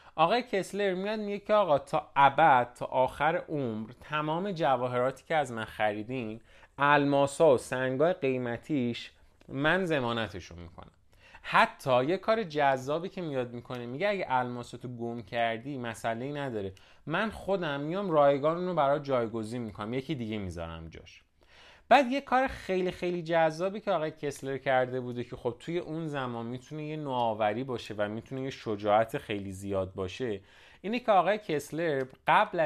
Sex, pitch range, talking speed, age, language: male, 110-160 Hz, 155 wpm, 30-49, Persian